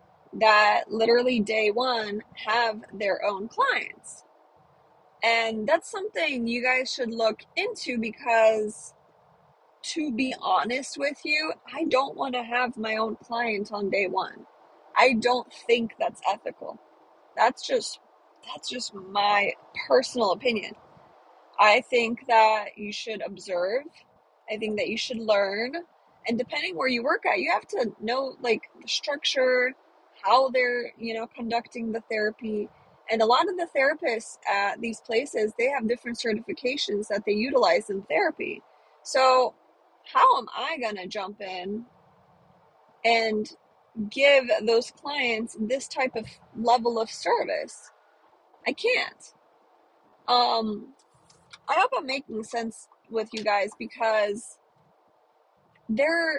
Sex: female